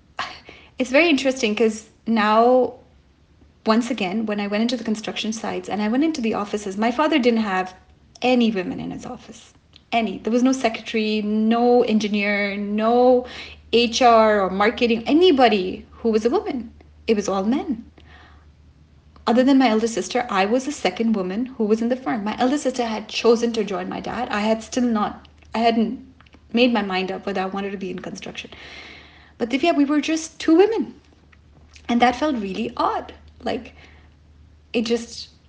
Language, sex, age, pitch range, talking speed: English, female, 30-49, 205-255 Hz, 180 wpm